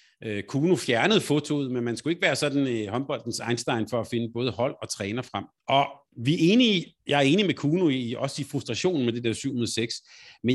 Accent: native